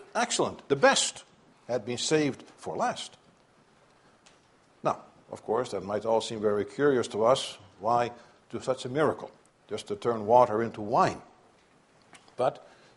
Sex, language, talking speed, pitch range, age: male, English, 145 wpm, 135-190 Hz, 60-79